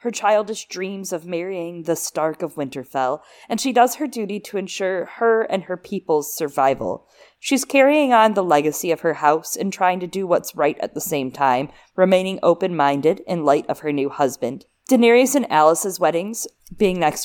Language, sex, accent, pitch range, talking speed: English, female, American, 165-230 Hz, 185 wpm